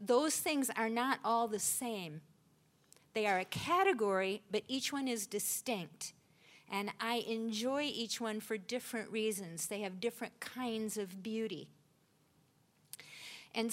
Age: 50-69